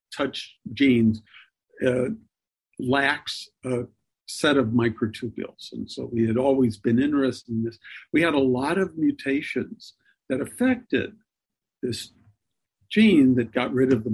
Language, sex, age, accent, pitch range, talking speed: English, male, 50-69, American, 115-155 Hz, 135 wpm